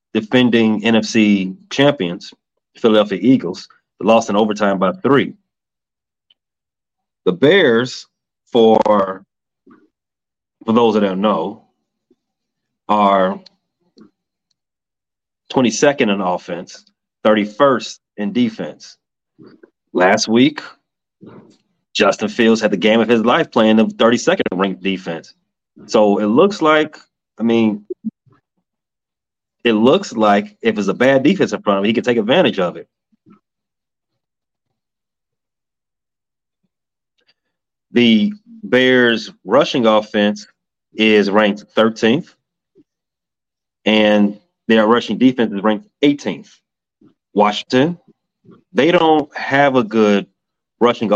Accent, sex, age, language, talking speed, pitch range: American, male, 30-49, English, 100 wpm, 105-125 Hz